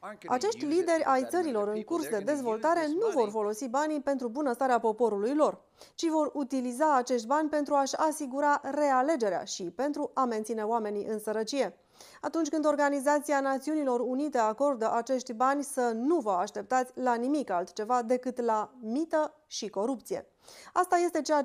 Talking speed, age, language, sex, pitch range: 155 wpm, 30-49, Romanian, female, 220-290 Hz